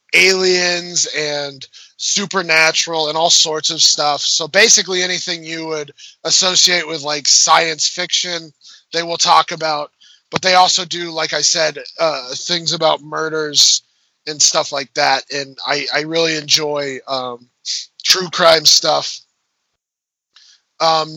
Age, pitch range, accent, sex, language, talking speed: 20-39, 155-180 Hz, American, male, English, 135 wpm